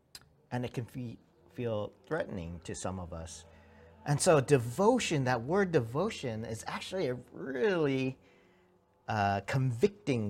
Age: 50-69